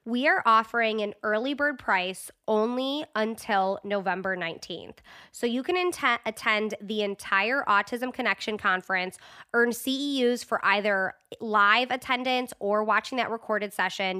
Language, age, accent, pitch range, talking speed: English, 20-39, American, 205-250 Hz, 130 wpm